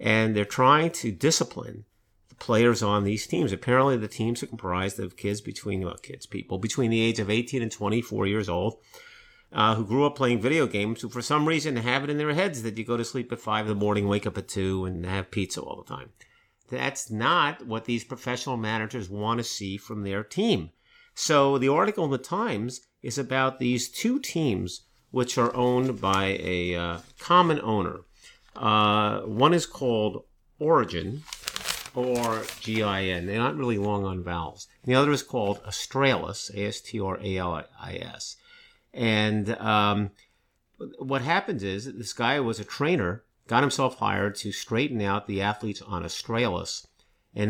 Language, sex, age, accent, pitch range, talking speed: English, male, 50-69, American, 100-125 Hz, 175 wpm